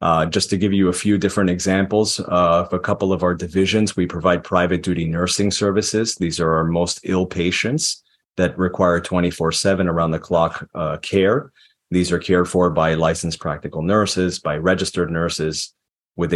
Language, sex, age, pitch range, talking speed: English, male, 30-49, 85-100 Hz, 165 wpm